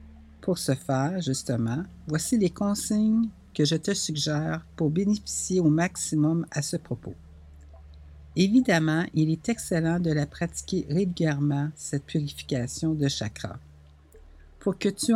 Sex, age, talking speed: female, 60-79, 130 wpm